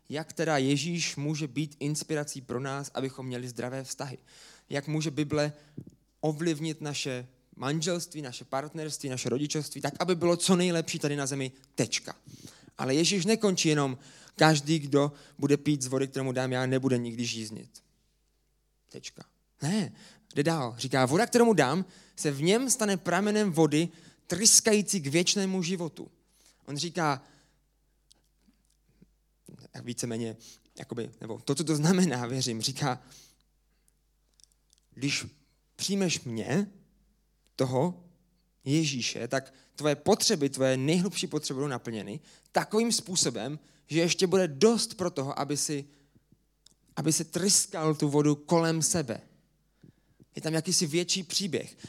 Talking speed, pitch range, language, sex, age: 130 wpm, 135-175 Hz, Czech, male, 20-39